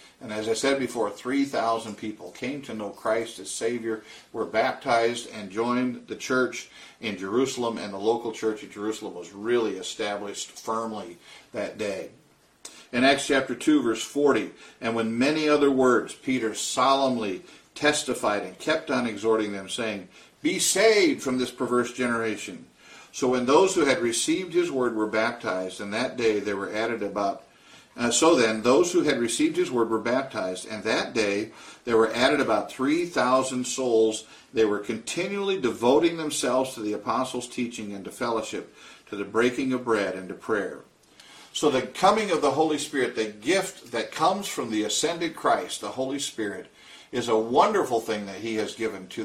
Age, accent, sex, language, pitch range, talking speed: 50-69, American, male, English, 110-135 Hz, 175 wpm